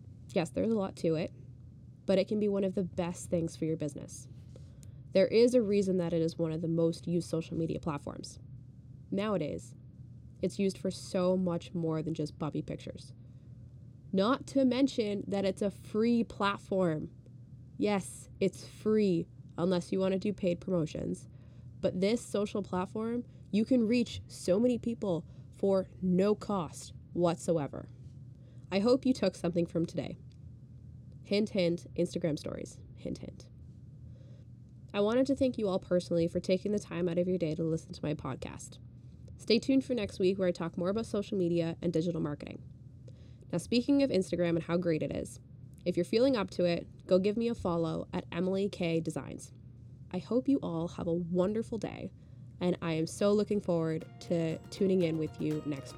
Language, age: English, 20-39